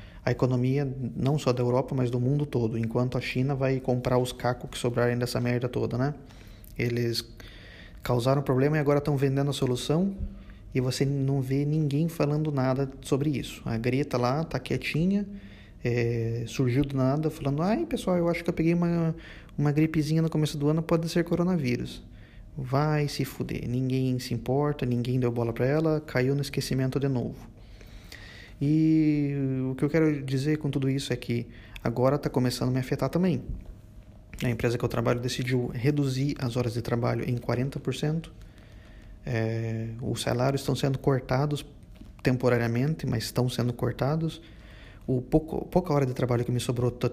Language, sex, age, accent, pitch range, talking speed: Portuguese, male, 20-39, Brazilian, 120-145 Hz, 175 wpm